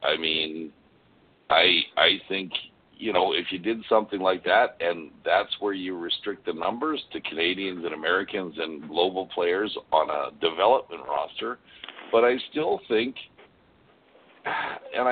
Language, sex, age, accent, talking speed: English, male, 60-79, American, 145 wpm